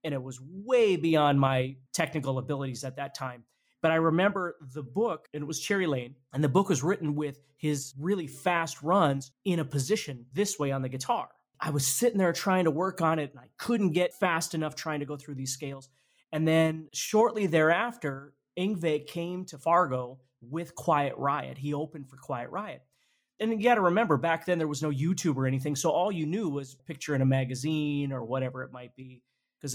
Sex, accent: male, American